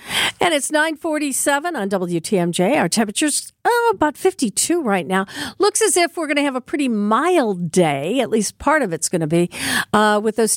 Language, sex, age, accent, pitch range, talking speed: English, female, 50-69, American, 190-280 Hz, 195 wpm